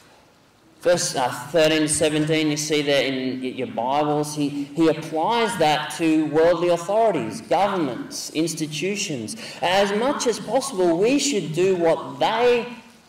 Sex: male